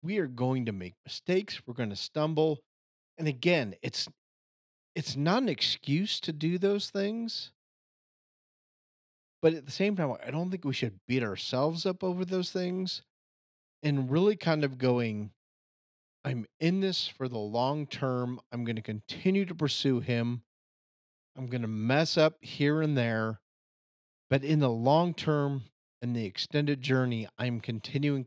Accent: American